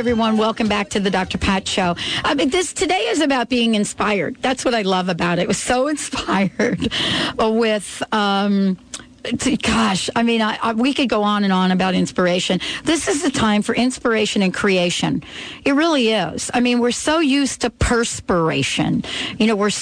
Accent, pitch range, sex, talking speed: American, 195-260 Hz, female, 190 wpm